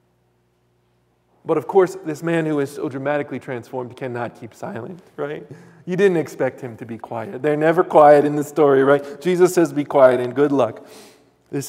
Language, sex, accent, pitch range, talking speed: English, male, American, 130-165 Hz, 185 wpm